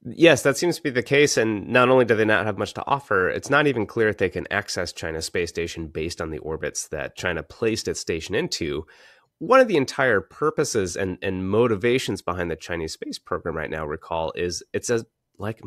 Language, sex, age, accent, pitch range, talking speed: English, male, 30-49, American, 90-125 Hz, 220 wpm